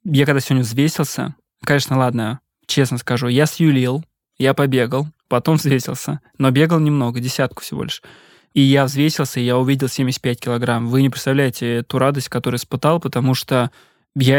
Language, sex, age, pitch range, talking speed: Russian, male, 20-39, 125-145 Hz, 160 wpm